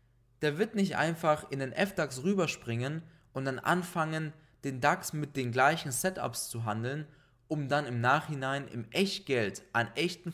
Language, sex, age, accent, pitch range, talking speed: German, male, 20-39, German, 120-170 Hz, 155 wpm